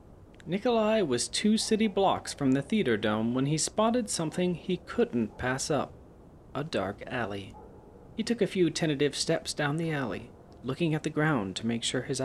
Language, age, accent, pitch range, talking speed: English, 30-49, American, 125-190 Hz, 180 wpm